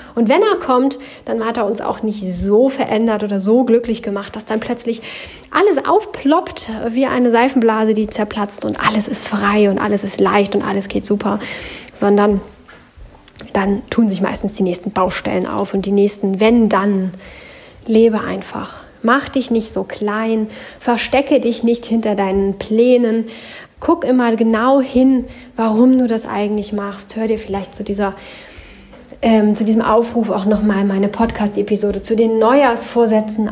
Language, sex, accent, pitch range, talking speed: German, female, German, 205-245 Hz, 160 wpm